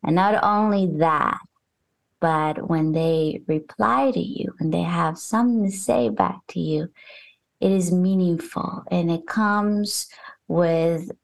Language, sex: English, female